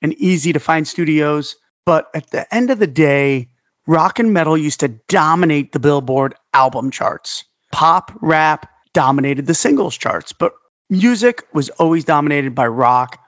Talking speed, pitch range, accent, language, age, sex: 160 wpm, 145-190 Hz, American, English, 40-59, male